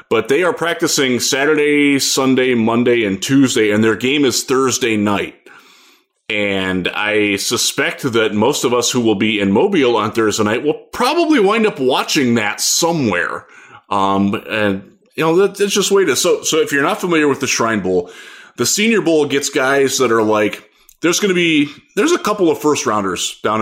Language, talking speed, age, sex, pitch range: English, 190 wpm, 20-39, male, 105-140 Hz